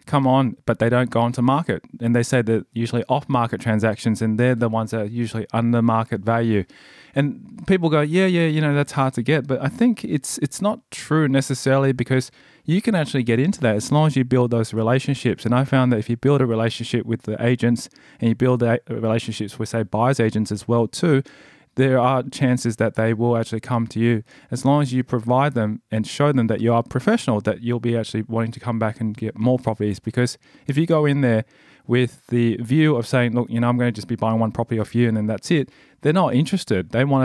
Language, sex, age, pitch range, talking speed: English, male, 20-39, 115-130 Hz, 240 wpm